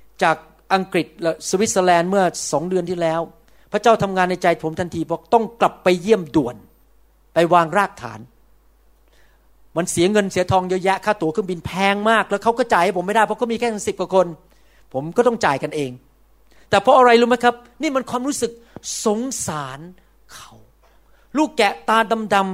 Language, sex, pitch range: Thai, male, 175-235 Hz